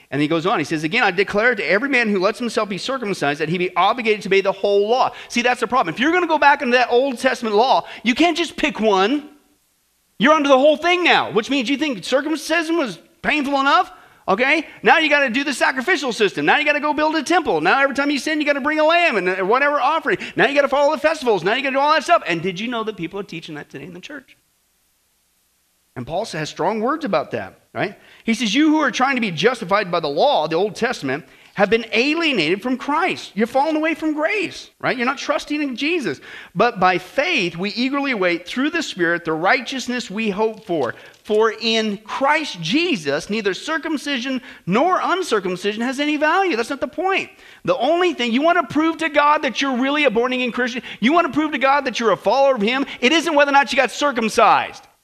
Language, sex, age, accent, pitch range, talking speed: English, male, 40-59, American, 210-305 Hz, 245 wpm